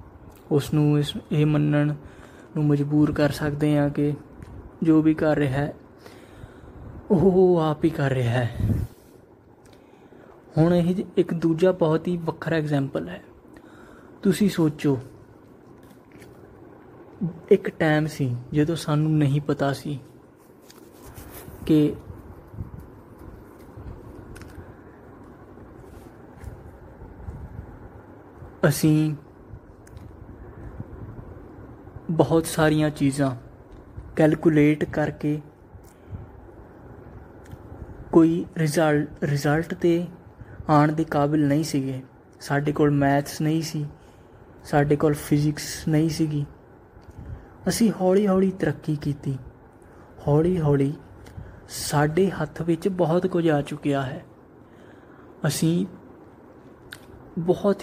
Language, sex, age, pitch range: Punjabi, male, 20-39, 120-160 Hz